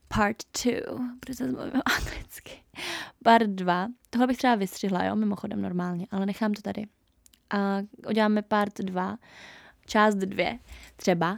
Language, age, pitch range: Czech, 20-39, 190-230 Hz